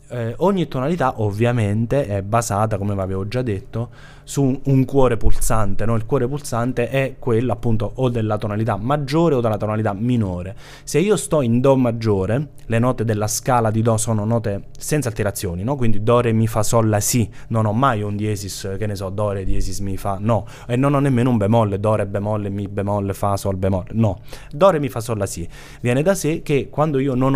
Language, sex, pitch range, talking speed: Italian, male, 105-140 Hz, 210 wpm